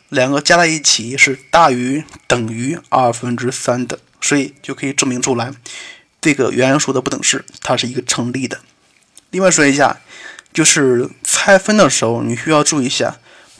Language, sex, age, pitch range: Chinese, male, 20-39, 130-160 Hz